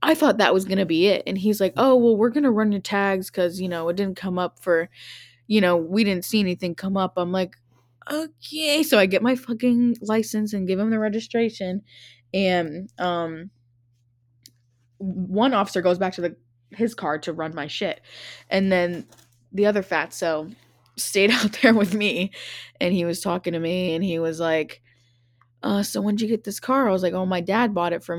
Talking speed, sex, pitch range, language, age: 210 wpm, female, 165-200 Hz, English, 10-29